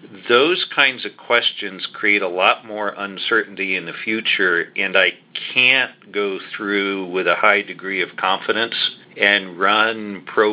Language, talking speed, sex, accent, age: English, 150 wpm, male, American, 50-69